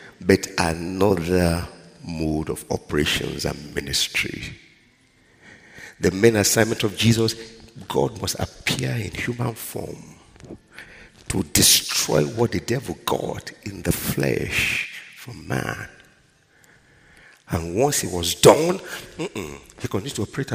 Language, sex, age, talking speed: English, male, 50-69, 115 wpm